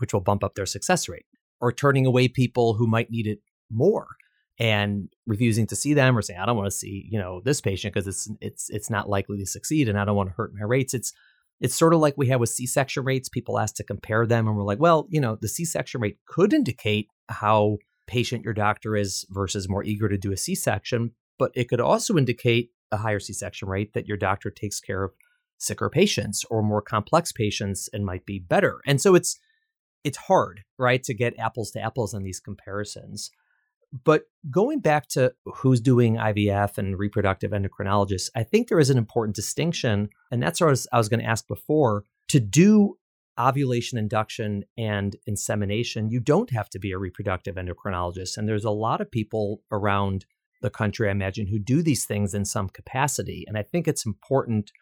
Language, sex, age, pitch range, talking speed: English, male, 30-49, 105-125 Hz, 205 wpm